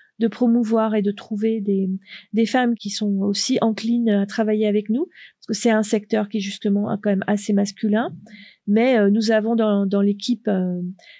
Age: 40-59